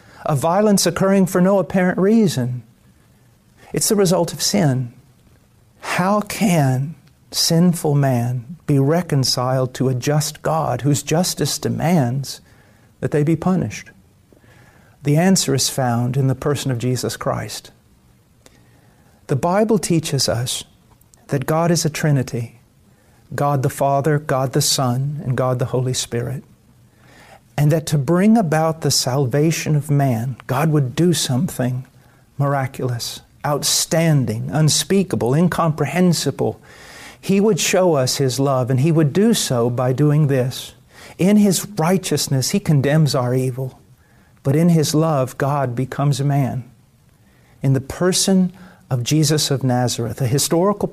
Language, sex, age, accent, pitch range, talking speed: English, male, 50-69, American, 130-165 Hz, 135 wpm